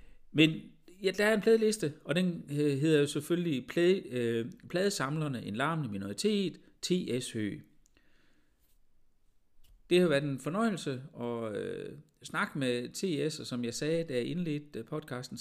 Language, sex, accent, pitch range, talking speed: Danish, male, native, 115-160 Hz, 140 wpm